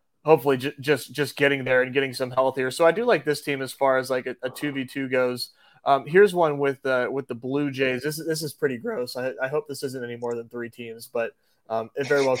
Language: English